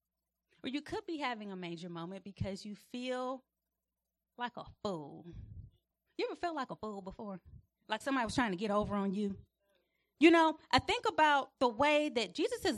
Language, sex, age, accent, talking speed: English, female, 30-49, American, 180 wpm